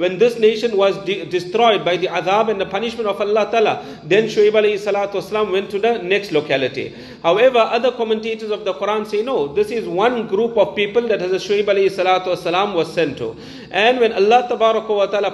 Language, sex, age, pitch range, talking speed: English, male, 40-59, 195-230 Hz, 195 wpm